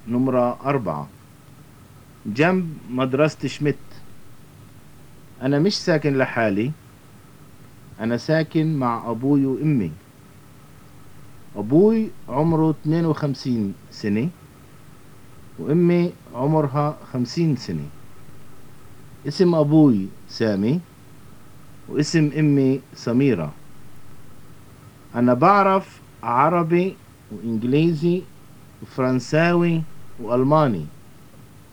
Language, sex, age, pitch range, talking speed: English, male, 50-69, 125-155 Hz, 65 wpm